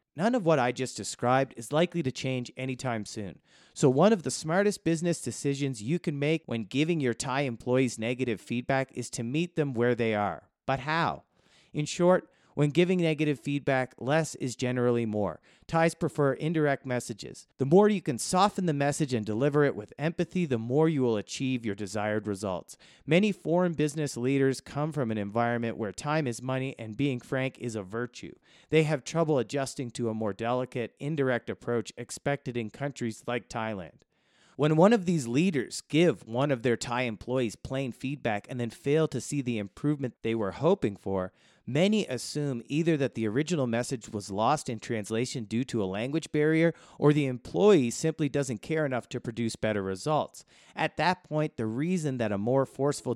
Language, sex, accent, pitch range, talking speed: English, male, American, 120-155 Hz, 185 wpm